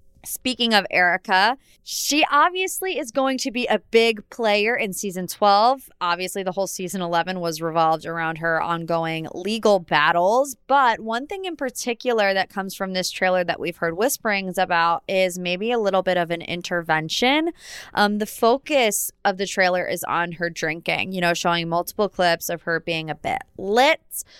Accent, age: American, 20-39